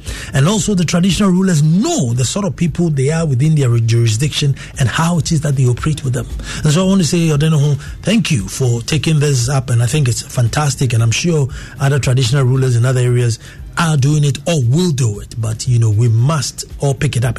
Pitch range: 125-185 Hz